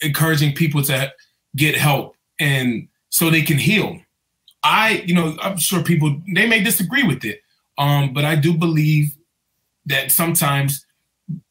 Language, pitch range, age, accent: English, 145-185 Hz, 20-39, American